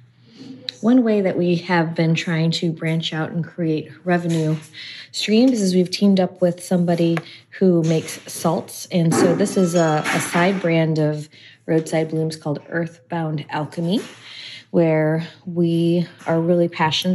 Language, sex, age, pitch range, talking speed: English, female, 20-39, 150-185 Hz, 145 wpm